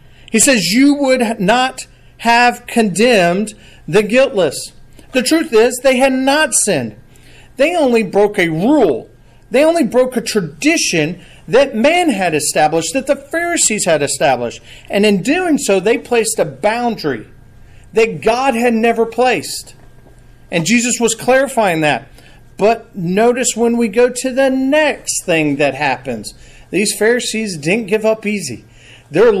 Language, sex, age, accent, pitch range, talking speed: English, male, 40-59, American, 160-240 Hz, 145 wpm